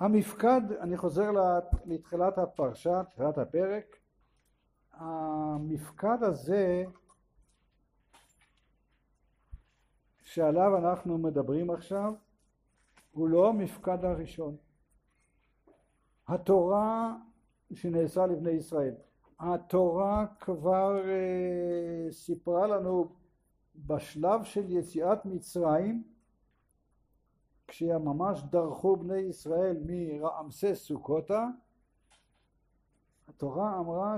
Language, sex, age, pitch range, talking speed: English, male, 60-79, 160-200 Hz, 65 wpm